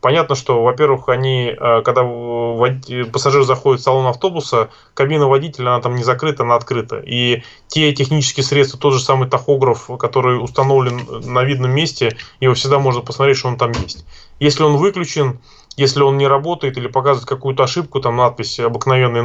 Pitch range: 120-140 Hz